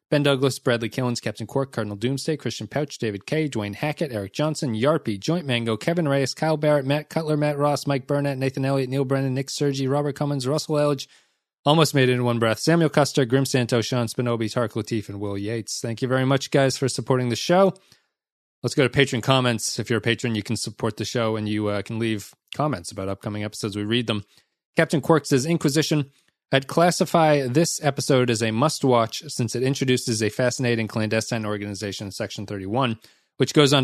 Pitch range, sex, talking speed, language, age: 110-140 Hz, male, 200 wpm, English, 30-49